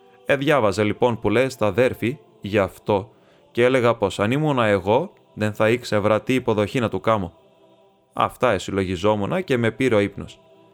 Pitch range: 100-135 Hz